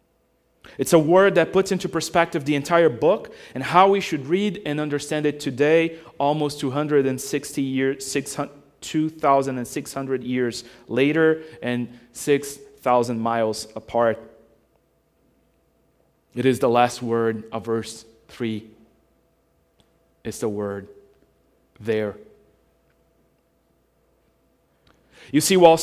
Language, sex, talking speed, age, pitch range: English, male, 100 wpm, 30-49, 125-155 Hz